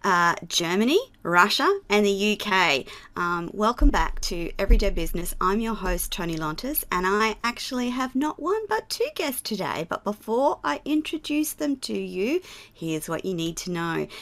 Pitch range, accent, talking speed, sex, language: 195-270 Hz, Australian, 170 wpm, female, English